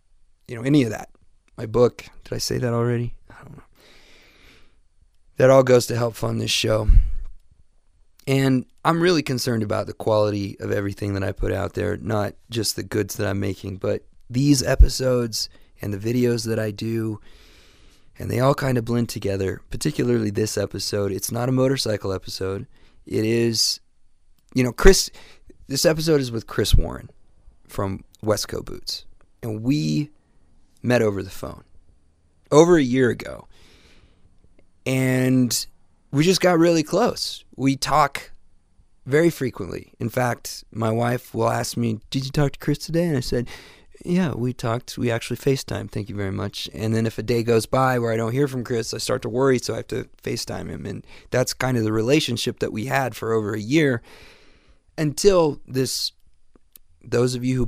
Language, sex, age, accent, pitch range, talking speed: English, male, 30-49, American, 95-125 Hz, 175 wpm